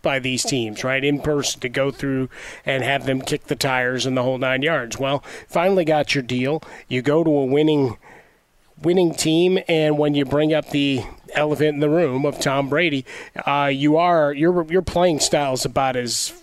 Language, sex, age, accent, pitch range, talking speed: English, male, 30-49, American, 130-150 Hz, 200 wpm